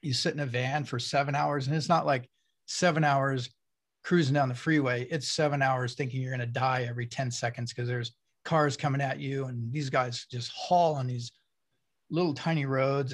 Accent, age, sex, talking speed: American, 40-59, male, 205 wpm